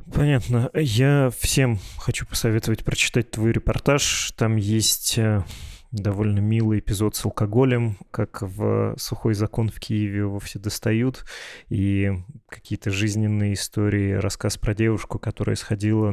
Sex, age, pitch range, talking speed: male, 20-39, 100-115 Hz, 125 wpm